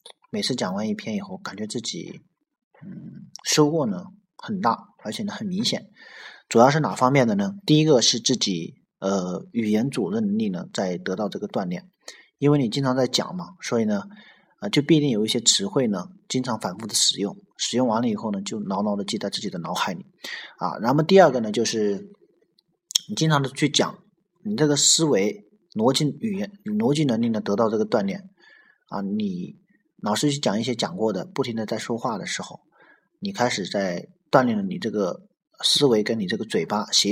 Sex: male